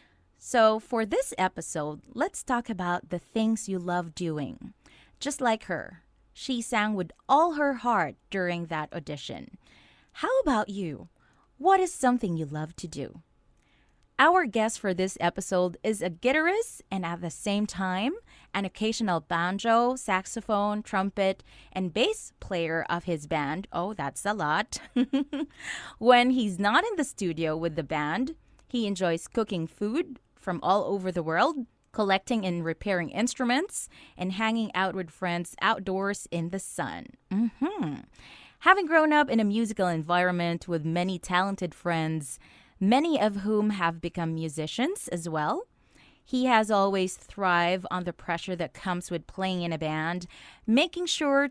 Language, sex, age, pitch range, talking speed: Filipino, female, 20-39, 175-230 Hz, 150 wpm